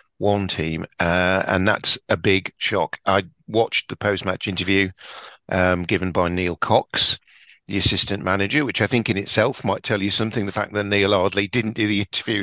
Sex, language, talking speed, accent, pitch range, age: male, English, 190 wpm, British, 90-105 Hz, 50-69